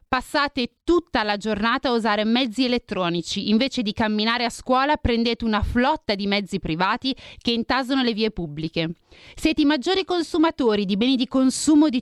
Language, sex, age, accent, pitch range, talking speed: Italian, female, 30-49, native, 195-260 Hz, 165 wpm